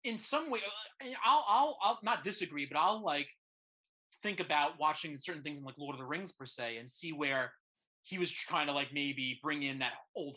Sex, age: male, 30-49